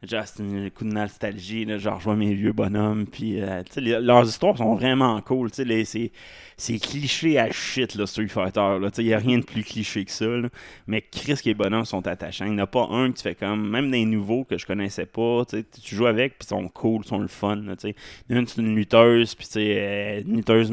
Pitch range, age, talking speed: 100-115 Hz, 20-39, 245 wpm